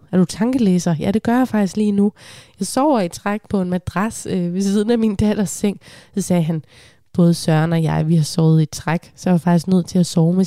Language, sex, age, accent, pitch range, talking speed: Danish, female, 20-39, native, 170-220 Hz, 250 wpm